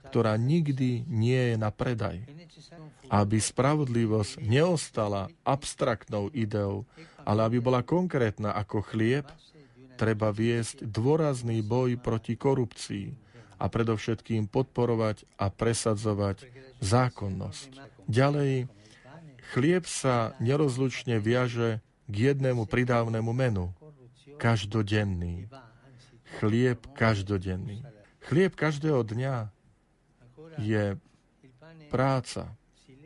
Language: Slovak